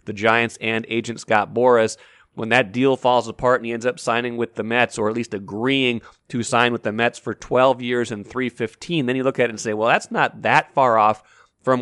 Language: English